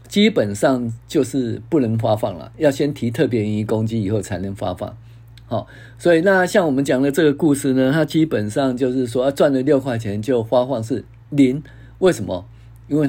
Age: 50-69